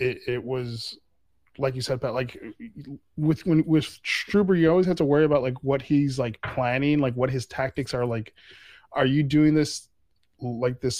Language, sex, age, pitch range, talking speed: English, male, 20-39, 110-135 Hz, 190 wpm